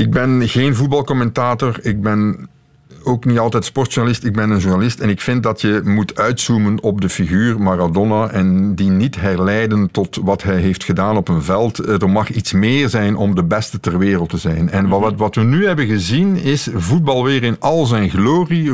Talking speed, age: 200 wpm, 50-69